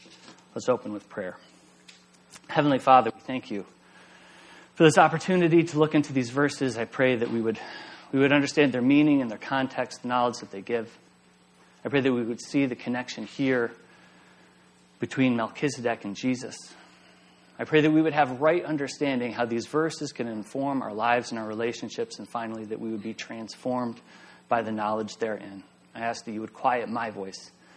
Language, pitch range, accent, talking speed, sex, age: English, 115-160 Hz, American, 185 wpm, male, 30-49